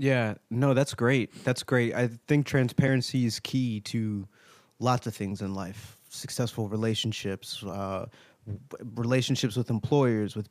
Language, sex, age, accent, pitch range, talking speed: English, male, 20-39, American, 105-120 Hz, 135 wpm